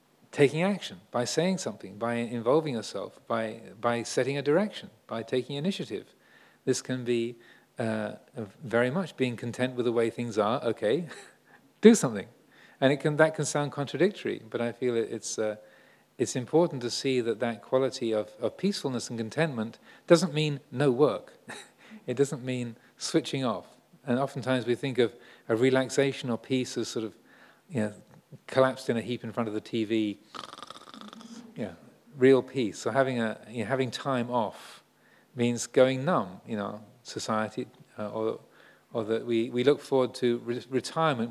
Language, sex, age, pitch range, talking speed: English, male, 40-59, 115-140 Hz, 165 wpm